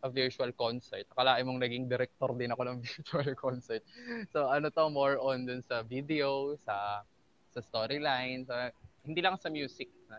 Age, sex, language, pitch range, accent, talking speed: 20-39, male, Filipino, 115-140 Hz, native, 170 wpm